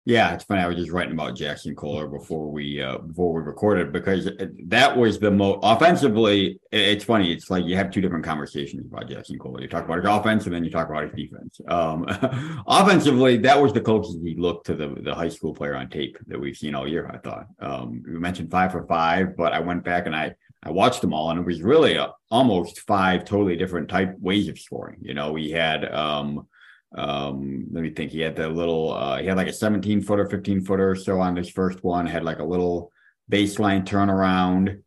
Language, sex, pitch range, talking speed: English, male, 75-95 Hz, 230 wpm